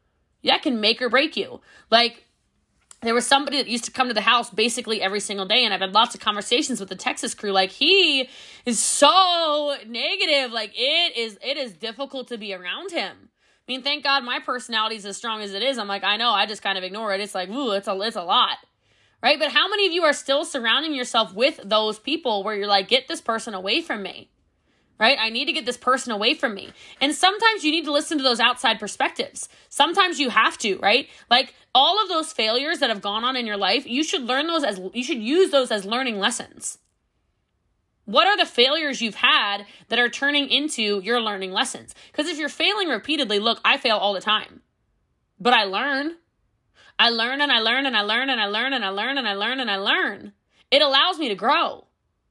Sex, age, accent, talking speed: female, 20-39, American, 230 wpm